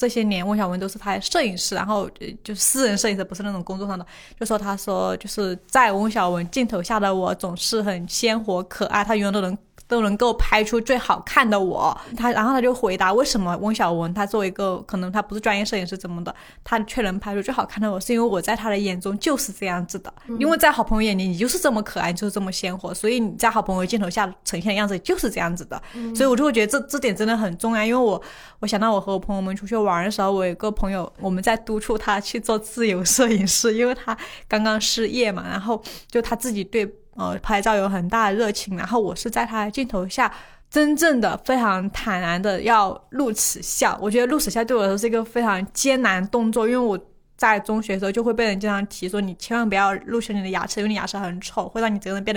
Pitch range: 195-235 Hz